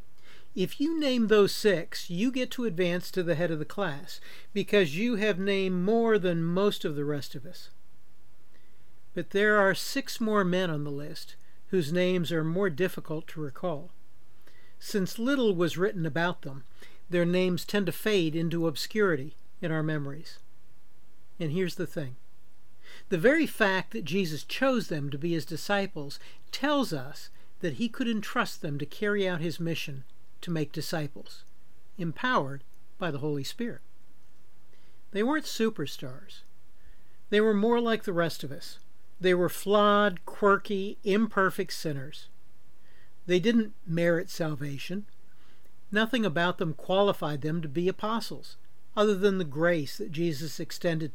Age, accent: 60-79, American